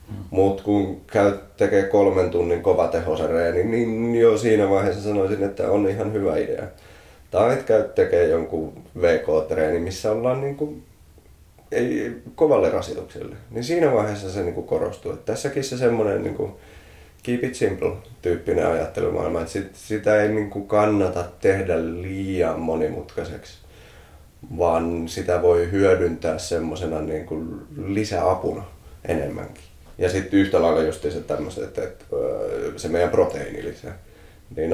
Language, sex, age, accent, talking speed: Finnish, male, 30-49, native, 125 wpm